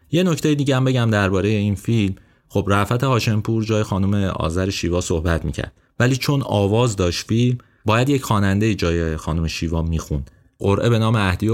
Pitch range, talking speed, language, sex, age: 90-110 Hz, 175 wpm, Persian, male, 30-49